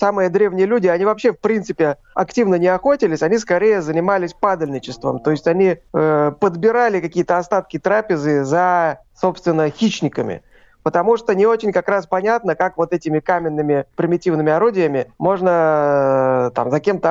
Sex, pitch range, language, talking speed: male, 165-210 Hz, Russian, 150 wpm